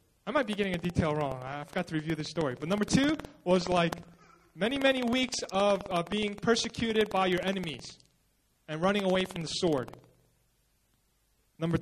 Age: 30-49